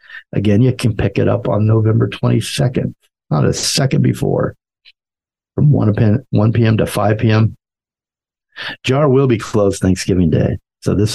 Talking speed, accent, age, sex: 145 wpm, American, 50-69, male